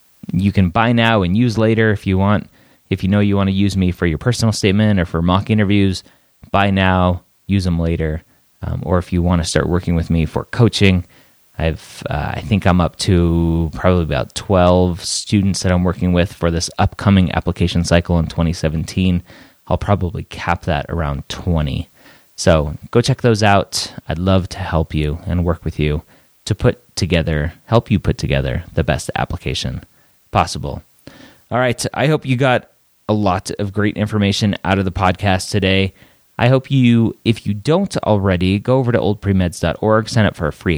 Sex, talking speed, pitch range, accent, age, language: male, 190 wpm, 85-105 Hz, American, 30-49, English